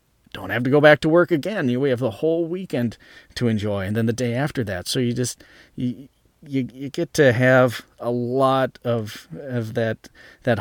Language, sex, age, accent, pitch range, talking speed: English, male, 30-49, American, 105-125 Hz, 205 wpm